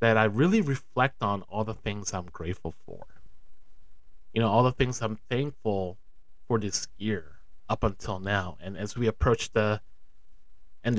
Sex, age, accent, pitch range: male, 30-49, American, 95-130 Hz